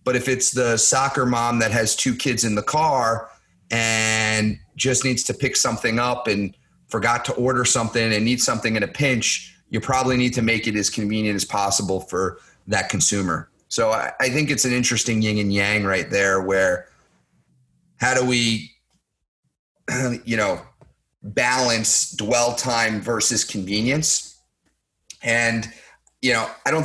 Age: 30-49